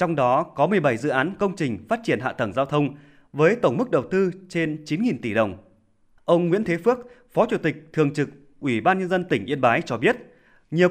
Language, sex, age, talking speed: Vietnamese, male, 20-39, 230 wpm